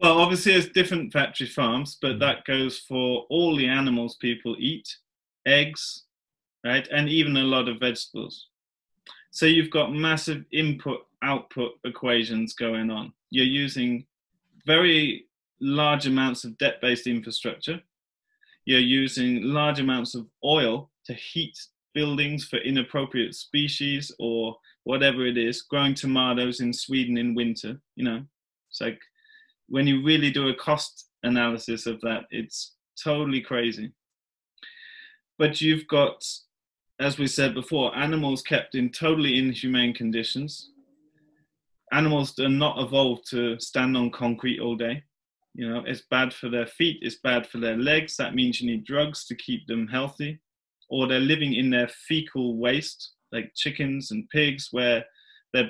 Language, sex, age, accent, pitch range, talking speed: English, male, 20-39, British, 120-150 Hz, 145 wpm